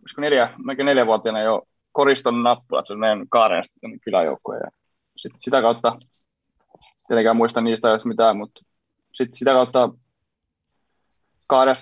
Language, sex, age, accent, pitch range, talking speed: Finnish, male, 20-39, native, 110-125 Hz, 130 wpm